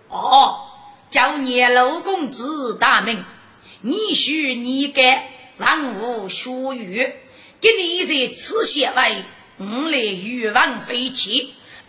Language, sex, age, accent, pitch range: Chinese, female, 30-49, native, 245-315 Hz